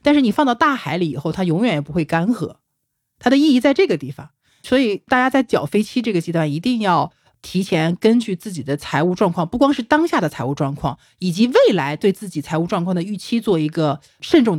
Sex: male